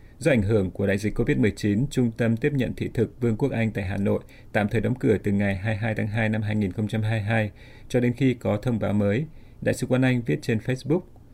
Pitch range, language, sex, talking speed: 105-125 Hz, Vietnamese, male, 235 wpm